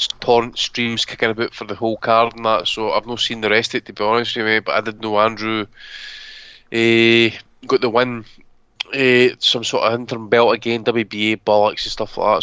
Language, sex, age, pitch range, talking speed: English, male, 20-39, 105-120 Hz, 220 wpm